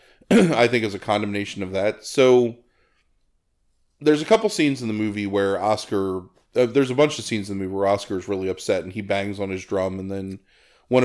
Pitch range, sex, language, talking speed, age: 95-120 Hz, male, English, 215 wpm, 30-49